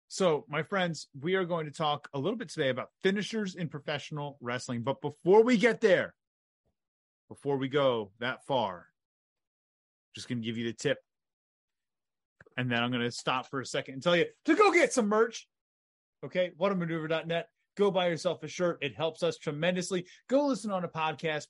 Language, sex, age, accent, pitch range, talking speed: English, male, 30-49, American, 130-175 Hz, 190 wpm